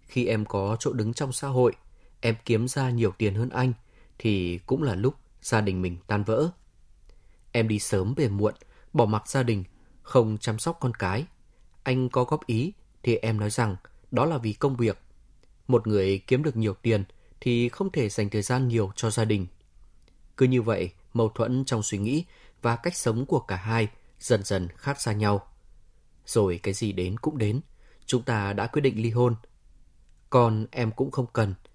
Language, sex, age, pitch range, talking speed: Vietnamese, male, 20-39, 105-125 Hz, 195 wpm